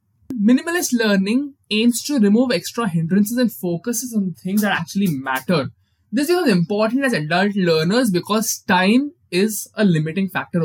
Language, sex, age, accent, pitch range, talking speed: English, male, 20-39, Indian, 155-235 Hz, 145 wpm